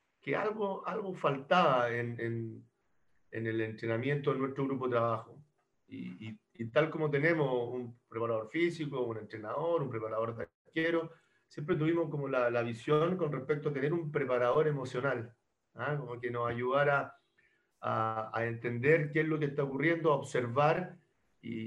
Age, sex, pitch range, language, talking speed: 40-59, male, 120-155 Hz, Spanish, 160 wpm